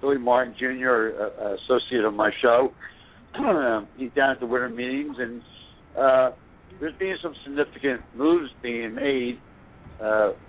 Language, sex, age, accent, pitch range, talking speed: English, male, 60-79, American, 110-140 Hz, 150 wpm